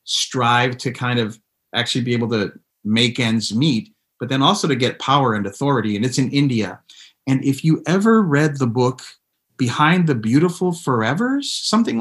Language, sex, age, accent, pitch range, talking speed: English, male, 30-49, American, 120-165 Hz, 175 wpm